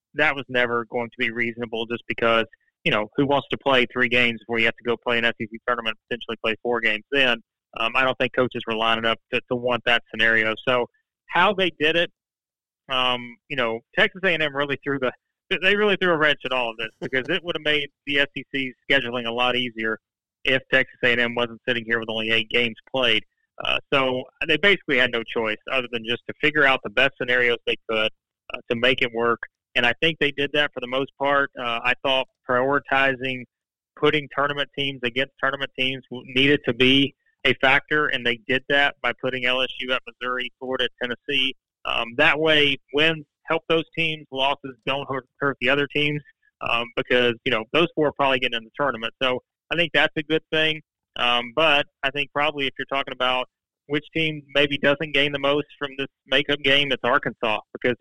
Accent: American